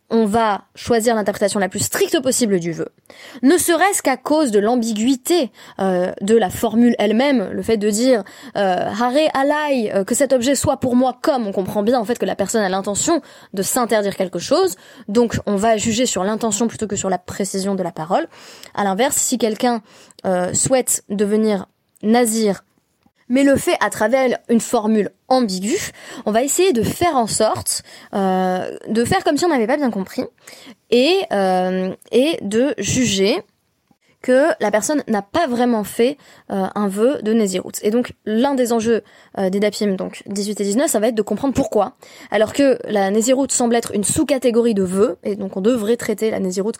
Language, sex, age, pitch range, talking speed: French, female, 20-39, 200-255 Hz, 195 wpm